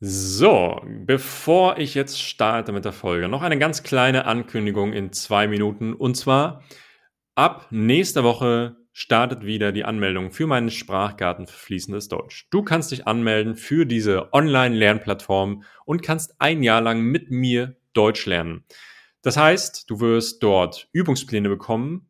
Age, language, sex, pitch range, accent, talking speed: 30-49, German, male, 100-130 Hz, German, 145 wpm